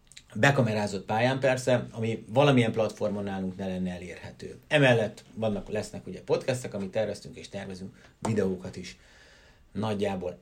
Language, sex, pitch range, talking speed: Hungarian, male, 100-125 Hz, 125 wpm